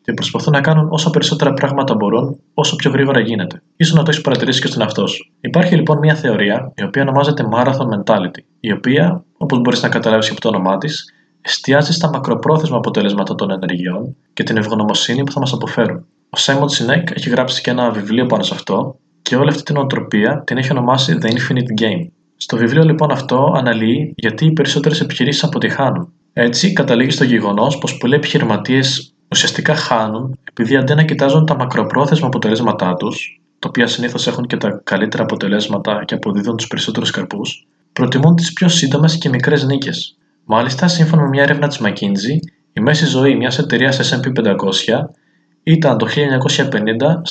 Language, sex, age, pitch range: Greek, male, 20-39, 125-155 Hz